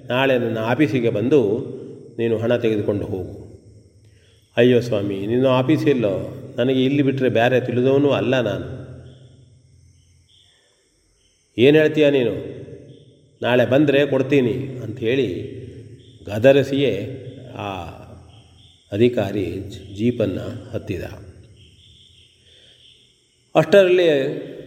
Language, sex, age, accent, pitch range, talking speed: Kannada, male, 40-59, native, 105-130 Hz, 80 wpm